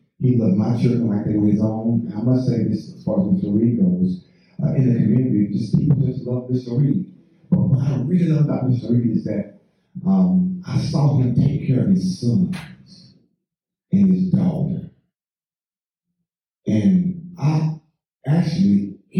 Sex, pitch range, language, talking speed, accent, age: male, 130-180 Hz, English, 170 wpm, American, 40-59